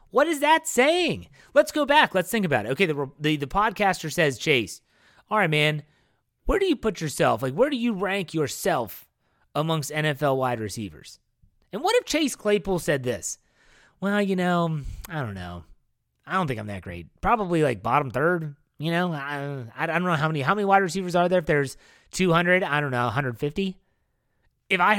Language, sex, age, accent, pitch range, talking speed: English, male, 30-49, American, 135-195 Hz, 195 wpm